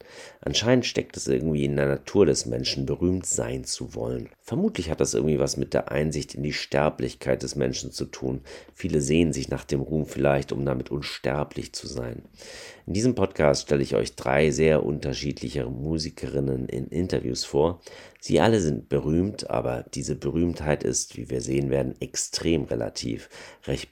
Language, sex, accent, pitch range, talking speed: German, male, German, 65-80 Hz, 170 wpm